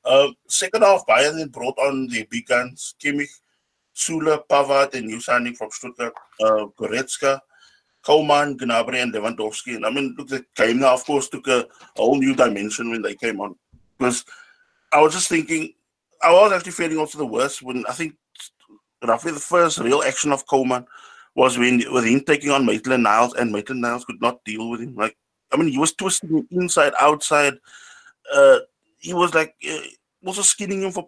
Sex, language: male, English